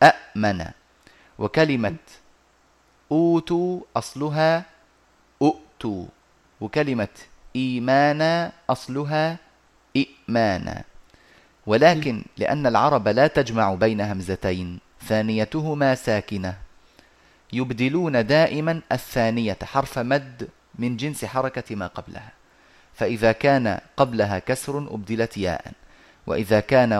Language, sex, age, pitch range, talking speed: Arabic, male, 30-49, 110-145 Hz, 80 wpm